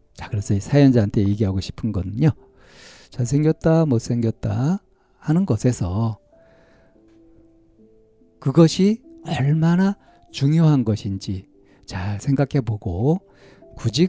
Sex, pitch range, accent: male, 115-160 Hz, native